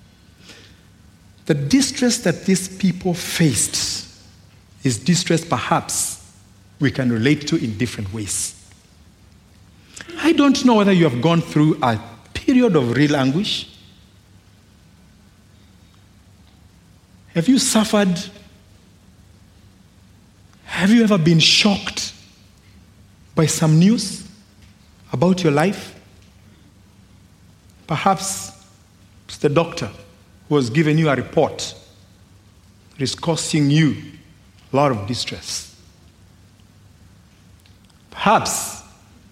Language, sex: English, male